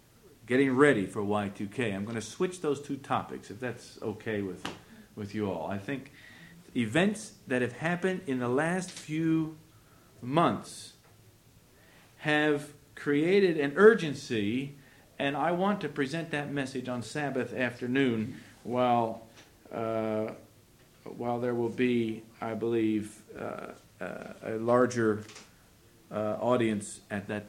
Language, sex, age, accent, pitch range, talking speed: English, male, 50-69, American, 110-150 Hz, 125 wpm